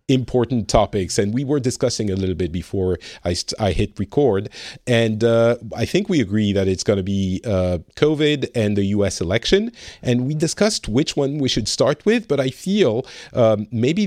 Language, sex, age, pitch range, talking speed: English, male, 40-59, 100-135 Hz, 190 wpm